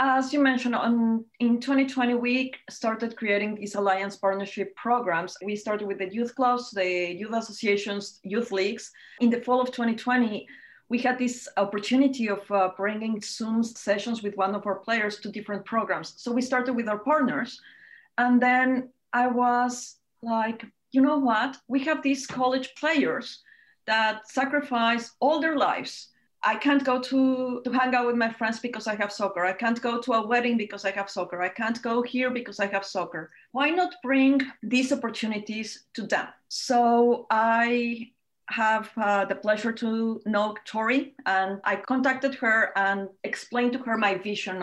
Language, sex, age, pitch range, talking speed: English, female, 30-49, 205-250 Hz, 170 wpm